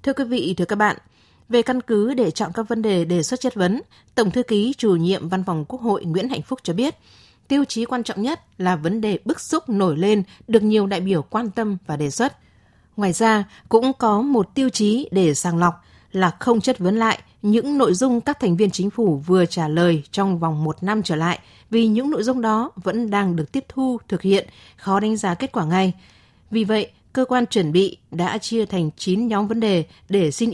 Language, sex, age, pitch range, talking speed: Vietnamese, female, 20-39, 180-230 Hz, 230 wpm